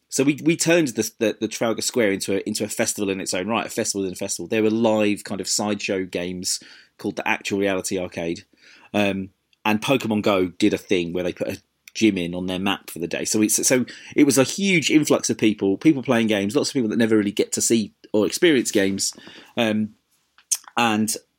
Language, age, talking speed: English, 30-49, 225 wpm